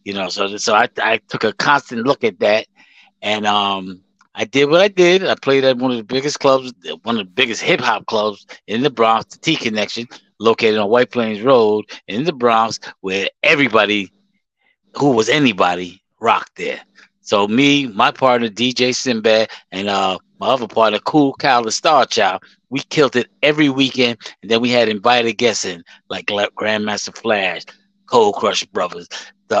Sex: male